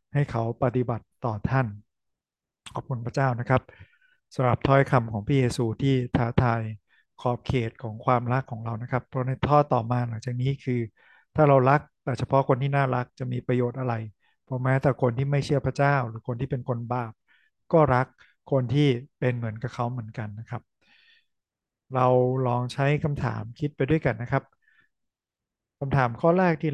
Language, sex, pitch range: Thai, male, 120-140 Hz